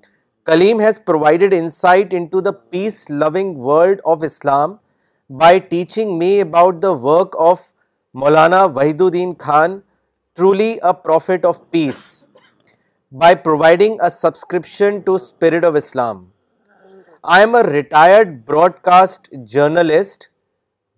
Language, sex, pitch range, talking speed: Urdu, male, 160-195 Hz, 110 wpm